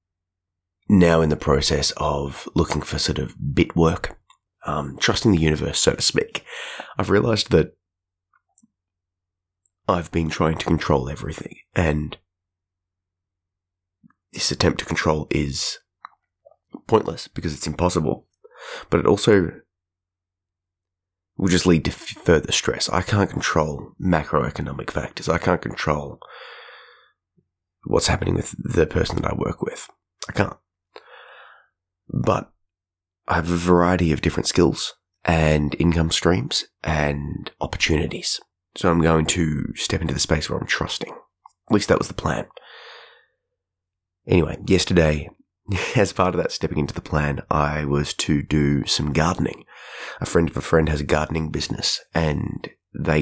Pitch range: 75-90 Hz